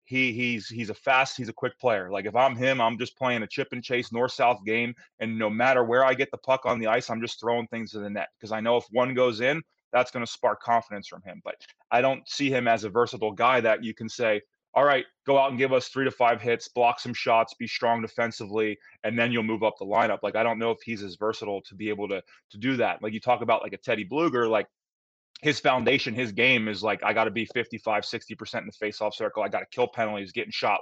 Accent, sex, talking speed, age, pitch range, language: American, male, 275 wpm, 20-39, 110-130 Hz, English